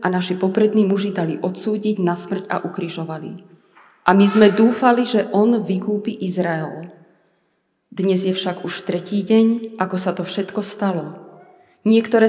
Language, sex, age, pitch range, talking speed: Slovak, female, 30-49, 185-220 Hz, 145 wpm